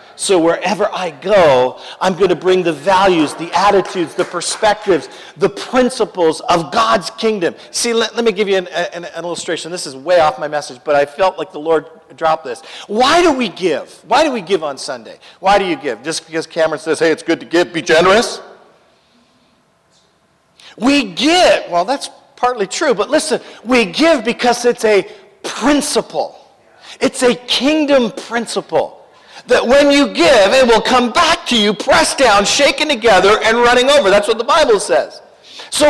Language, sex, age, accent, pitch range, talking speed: English, male, 50-69, American, 180-280 Hz, 180 wpm